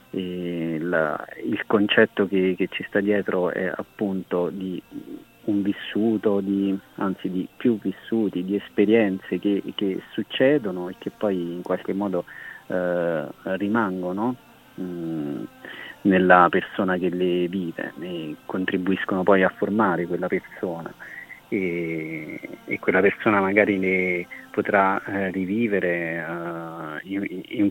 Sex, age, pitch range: male, 30-49, 90-105 Hz